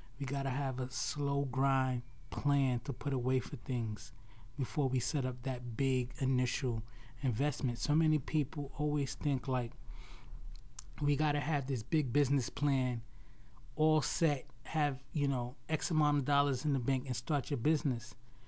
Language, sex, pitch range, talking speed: English, male, 125-145 Hz, 160 wpm